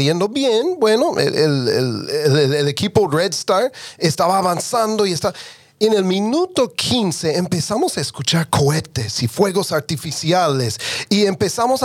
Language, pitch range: English, 145-225 Hz